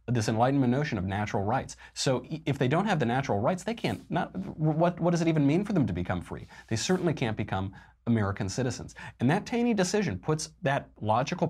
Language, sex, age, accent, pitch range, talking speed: English, male, 30-49, American, 100-140 Hz, 215 wpm